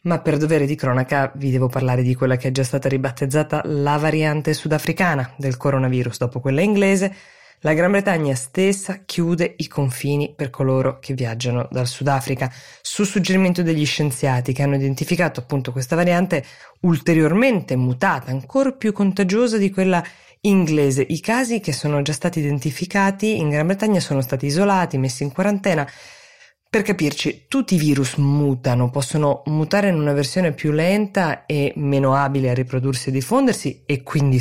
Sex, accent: female, native